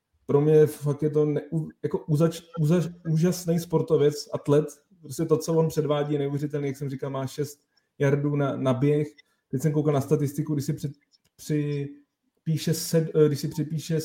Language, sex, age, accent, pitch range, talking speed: Czech, male, 30-49, native, 140-160 Hz, 150 wpm